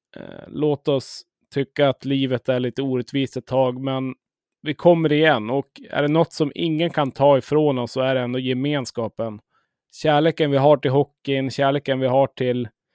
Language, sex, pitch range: Swedish, male, 130-150 Hz